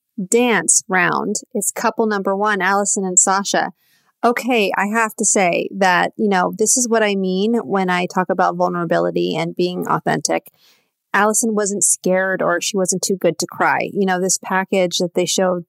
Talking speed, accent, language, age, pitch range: 180 wpm, American, English, 30-49, 180-210 Hz